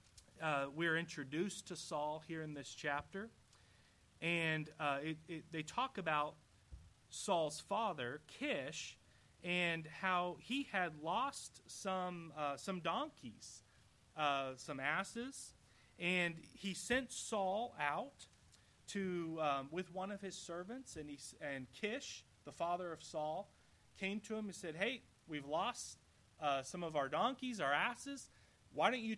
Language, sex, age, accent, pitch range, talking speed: English, male, 30-49, American, 140-195 Hz, 140 wpm